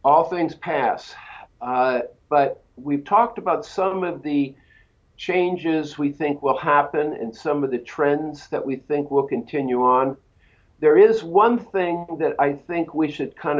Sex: male